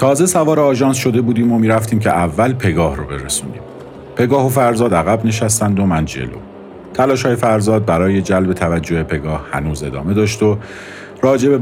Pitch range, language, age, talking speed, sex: 85-110 Hz, Persian, 50-69, 160 wpm, male